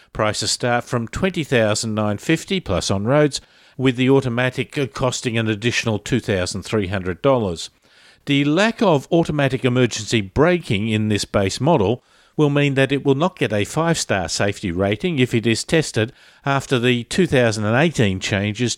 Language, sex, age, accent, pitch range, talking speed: English, male, 50-69, Australian, 110-150 Hz, 135 wpm